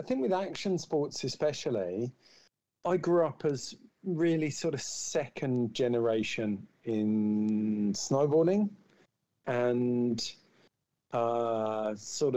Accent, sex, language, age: British, male, English, 50-69